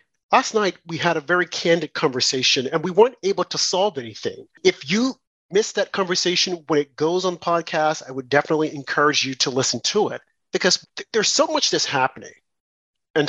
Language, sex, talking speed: English, male, 185 wpm